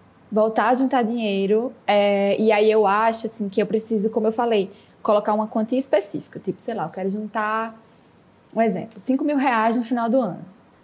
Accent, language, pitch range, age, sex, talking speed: Brazilian, Portuguese, 210-255 Hz, 10-29, female, 195 wpm